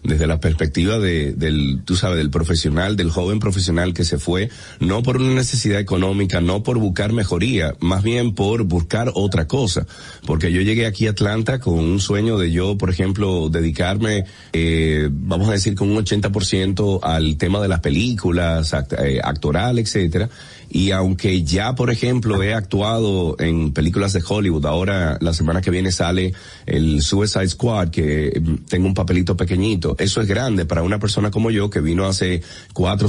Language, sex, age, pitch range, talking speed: Spanish, male, 30-49, 85-105 Hz, 175 wpm